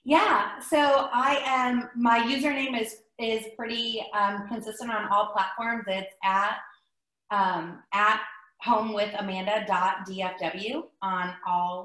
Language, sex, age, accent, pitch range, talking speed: English, female, 20-39, American, 190-255 Hz, 105 wpm